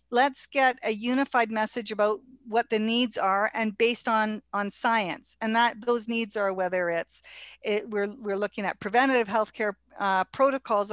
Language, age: English, 50-69